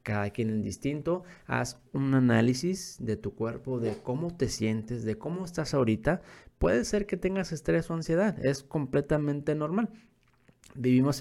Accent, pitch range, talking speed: Mexican, 110-140 Hz, 155 wpm